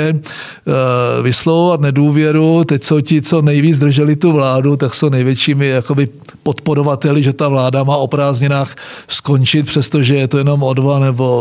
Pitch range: 140-170 Hz